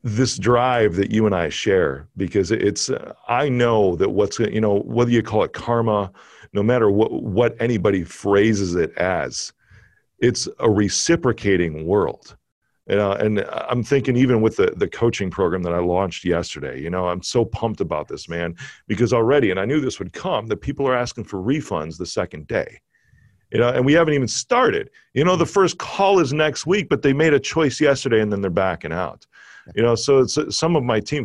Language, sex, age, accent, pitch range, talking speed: English, male, 40-59, American, 100-140 Hz, 205 wpm